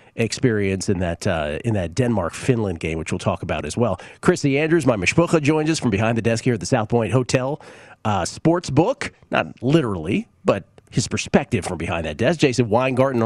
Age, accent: 40-59, American